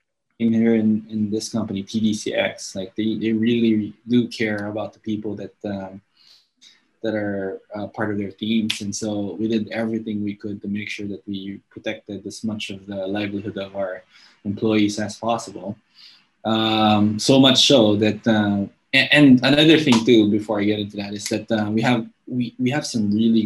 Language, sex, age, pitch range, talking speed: English, male, 20-39, 105-115 Hz, 190 wpm